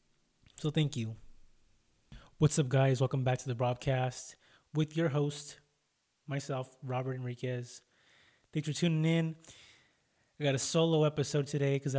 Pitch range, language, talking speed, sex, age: 120-150 Hz, English, 140 wpm, male, 20-39